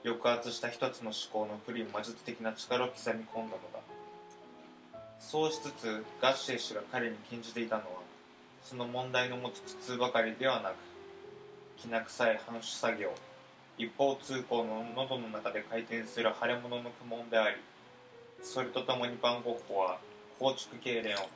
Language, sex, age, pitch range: Japanese, male, 20-39, 105-125 Hz